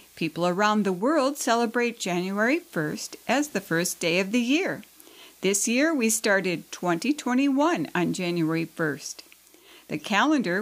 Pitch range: 185-285 Hz